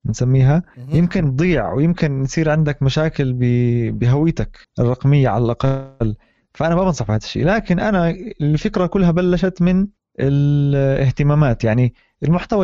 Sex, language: male, Arabic